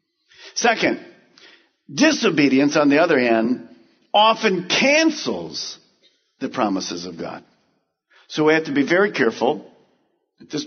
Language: English